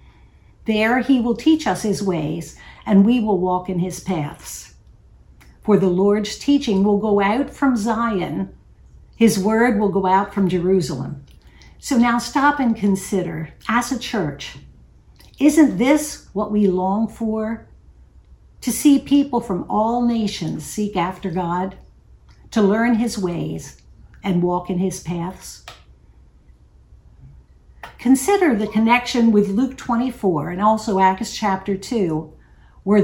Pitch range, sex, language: 160-225 Hz, female, English